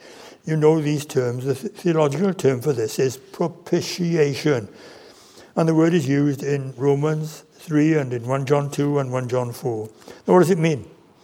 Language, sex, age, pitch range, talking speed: English, male, 60-79, 135-175 Hz, 175 wpm